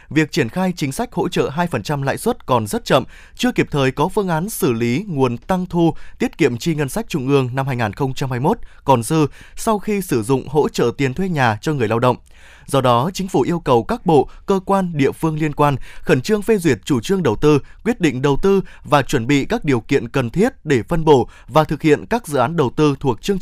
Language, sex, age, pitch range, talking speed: Vietnamese, male, 20-39, 130-175 Hz, 245 wpm